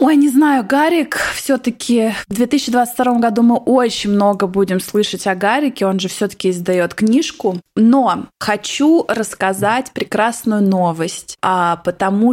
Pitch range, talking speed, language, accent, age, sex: 180-235 Hz, 125 wpm, Russian, native, 20-39, female